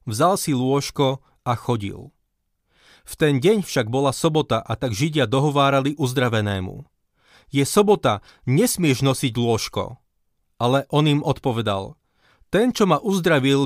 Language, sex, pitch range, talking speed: Slovak, male, 125-165 Hz, 125 wpm